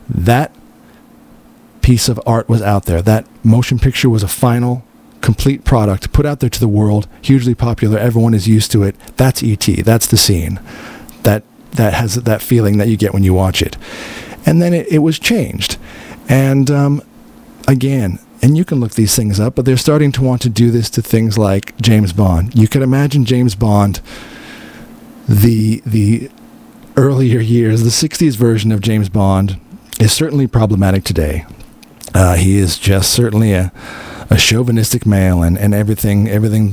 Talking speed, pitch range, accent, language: 175 wpm, 100-125 Hz, American, English